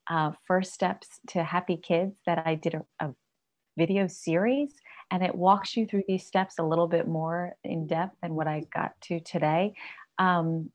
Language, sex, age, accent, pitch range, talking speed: English, female, 30-49, American, 155-180 Hz, 185 wpm